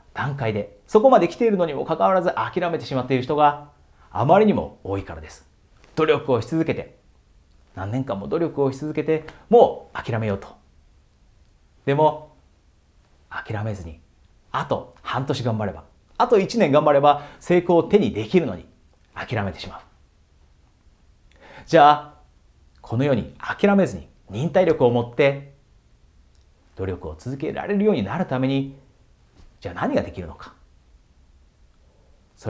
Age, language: 40-59, Japanese